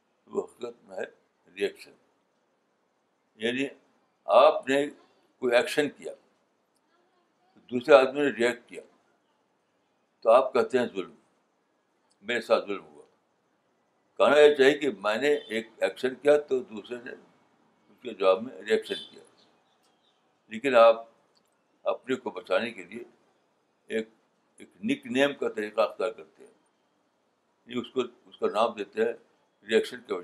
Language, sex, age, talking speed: Urdu, male, 60-79, 125 wpm